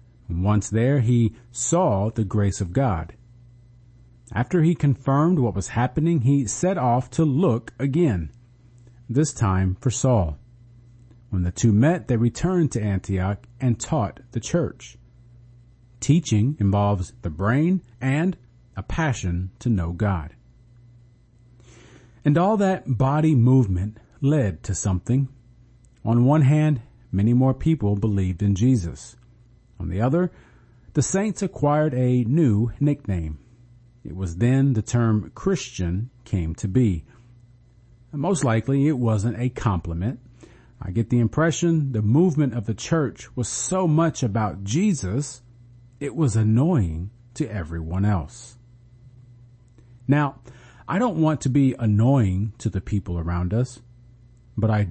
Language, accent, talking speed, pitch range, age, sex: English, American, 135 wpm, 105-130 Hz, 40-59, male